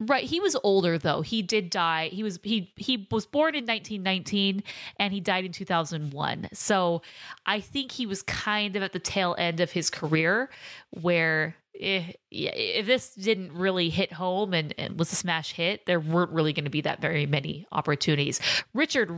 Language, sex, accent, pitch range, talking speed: English, female, American, 165-205 Hz, 190 wpm